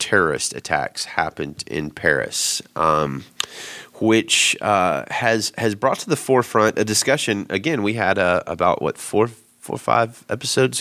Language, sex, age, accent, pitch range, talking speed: English, male, 30-49, American, 85-110 Hz, 150 wpm